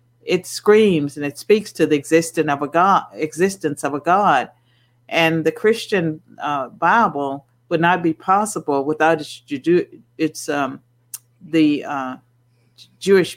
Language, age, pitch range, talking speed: English, 50-69, 140-180 Hz, 140 wpm